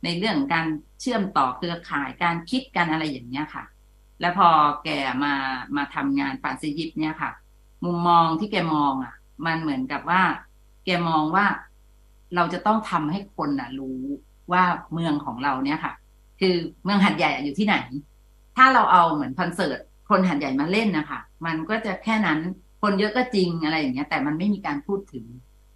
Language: English